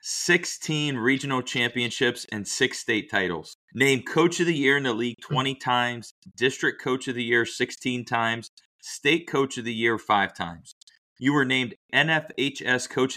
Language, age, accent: English, 30-49, American